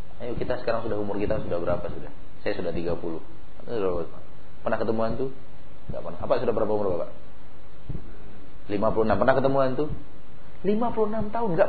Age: 40-59